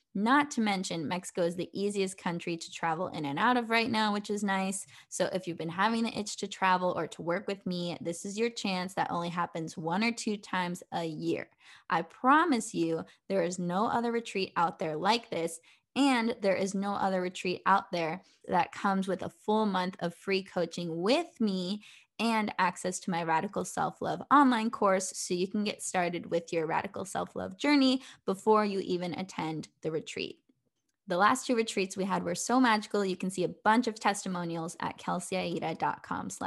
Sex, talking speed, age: female, 195 wpm, 10-29